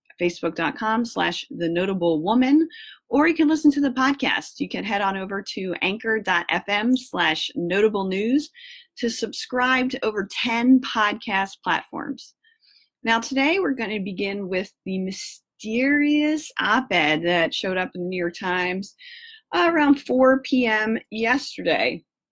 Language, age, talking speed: English, 30-49, 135 wpm